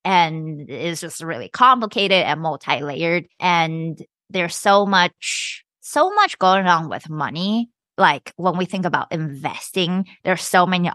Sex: female